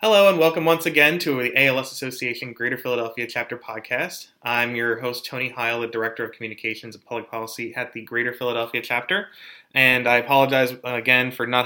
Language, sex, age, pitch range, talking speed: English, male, 20-39, 115-135 Hz, 185 wpm